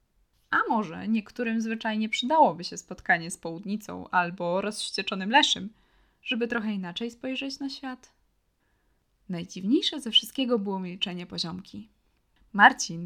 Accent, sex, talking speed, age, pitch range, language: native, female, 115 wpm, 20-39, 190-255 Hz, Polish